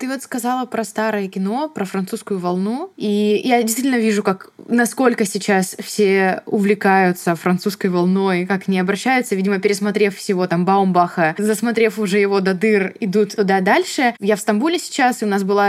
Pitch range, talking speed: 200-250 Hz, 165 wpm